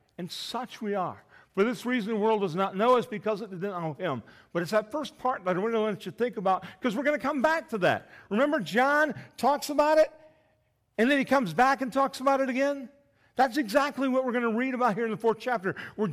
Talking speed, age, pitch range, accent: 255 wpm, 50-69, 210-265 Hz, American